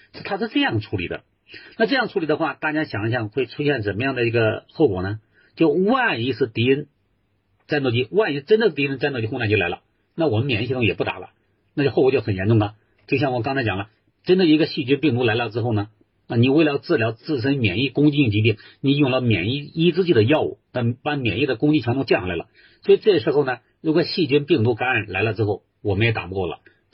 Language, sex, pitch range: Chinese, male, 105-145 Hz